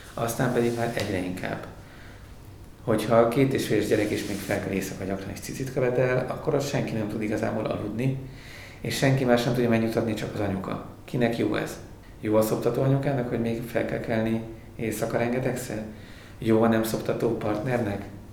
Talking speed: 185 wpm